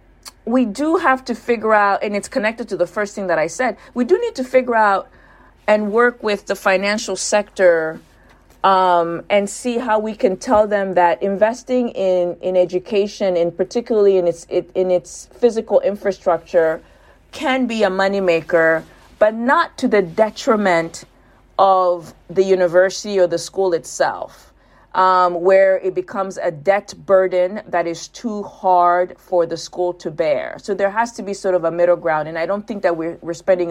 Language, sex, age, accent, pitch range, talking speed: English, female, 40-59, American, 170-210 Hz, 175 wpm